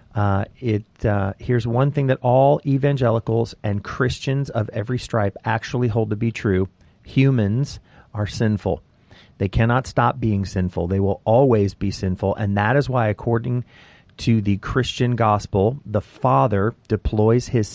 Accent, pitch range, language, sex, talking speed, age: American, 100-120 Hz, English, male, 150 wpm, 40-59